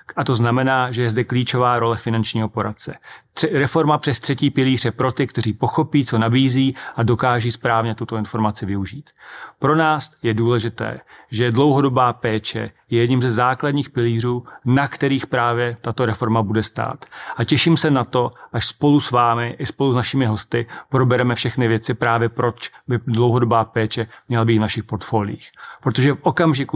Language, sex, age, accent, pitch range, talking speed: Czech, male, 40-59, native, 115-130 Hz, 170 wpm